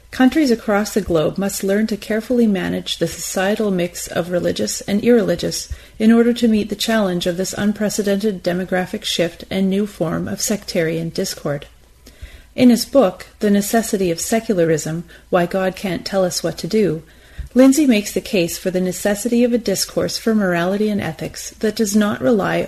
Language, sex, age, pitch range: English, female, 30-49, 175-220 Hz